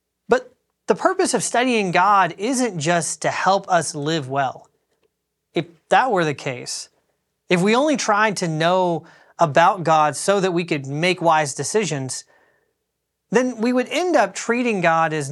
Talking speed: 155 wpm